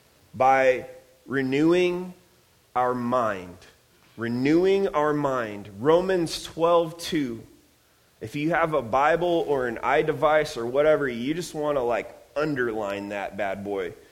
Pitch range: 125-170 Hz